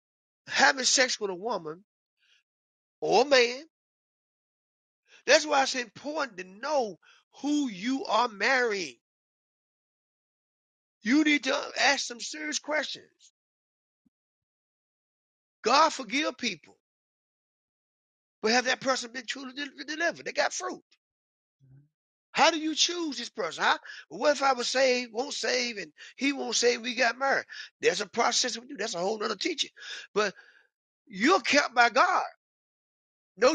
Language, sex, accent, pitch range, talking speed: English, male, American, 235-305 Hz, 135 wpm